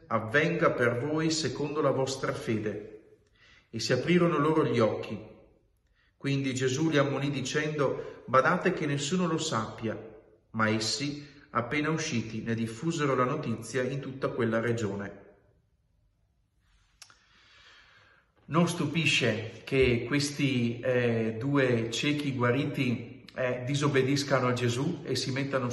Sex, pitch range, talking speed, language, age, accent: male, 120-150 Hz, 115 wpm, Italian, 40-59, native